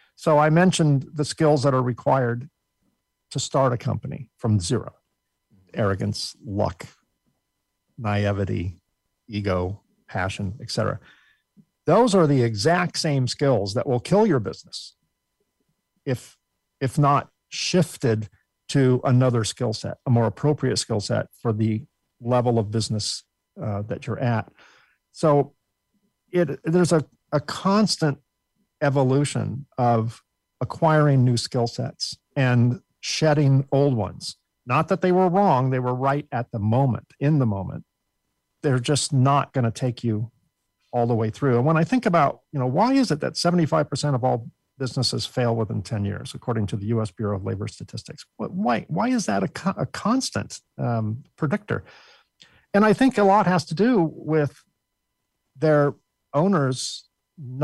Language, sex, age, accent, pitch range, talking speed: English, male, 50-69, American, 115-155 Hz, 150 wpm